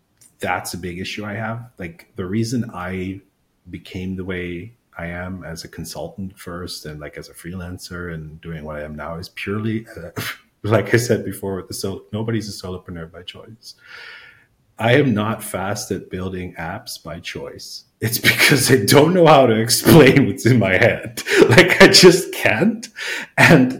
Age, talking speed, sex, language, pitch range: 40-59, 175 wpm, male, English, 95-130 Hz